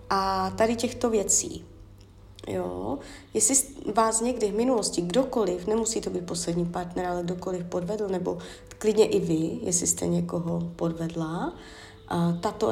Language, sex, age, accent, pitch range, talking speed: Czech, female, 30-49, native, 170-230 Hz, 130 wpm